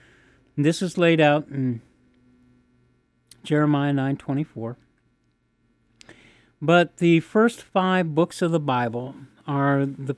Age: 50-69